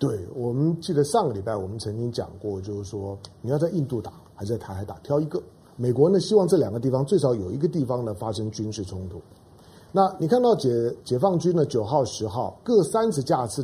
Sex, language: male, Chinese